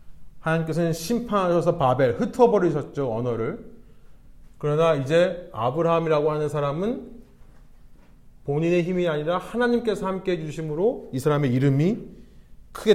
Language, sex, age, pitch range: Korean, male, 30-49, 125-180 Hz